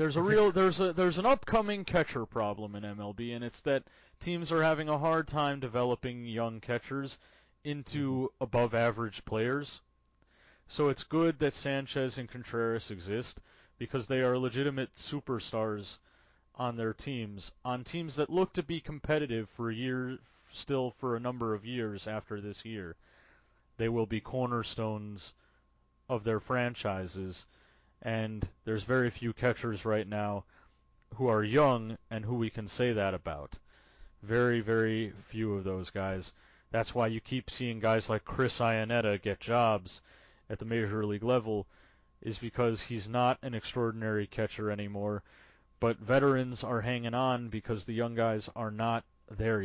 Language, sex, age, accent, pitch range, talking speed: English, male, 30-49, American, 105-130 Hz, 155 wpm